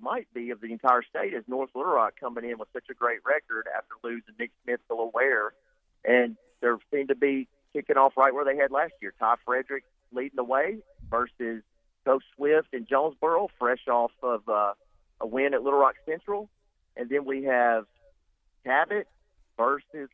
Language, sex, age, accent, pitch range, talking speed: English, male, 40-59, American, 115-140 Hz, 185 wpm